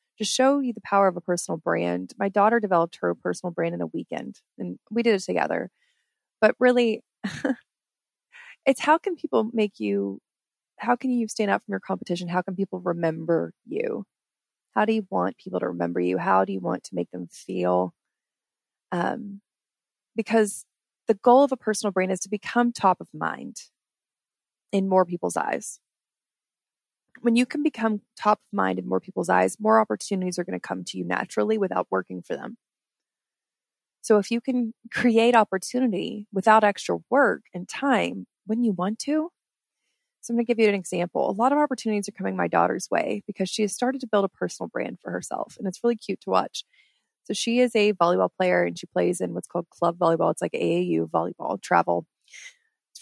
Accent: American